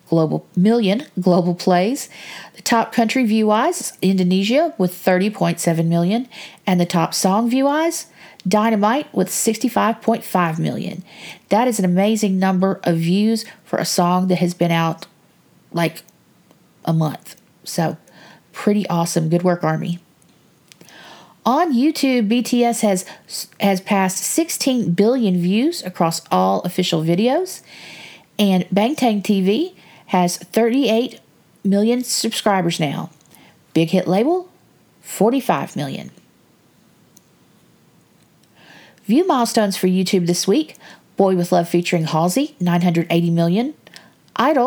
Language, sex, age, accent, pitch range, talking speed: English, female, 40-59, American, 175-230 Hz, 120 wpm